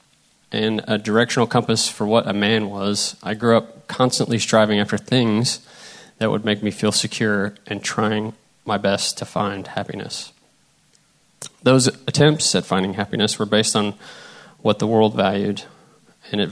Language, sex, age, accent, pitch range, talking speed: English, male, 20-39, American, 105-115 Hz, 155 wpm